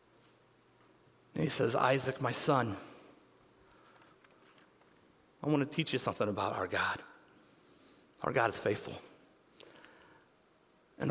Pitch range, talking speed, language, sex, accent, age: 150-195 Hz, 110 wpm, English, male, American, 40-59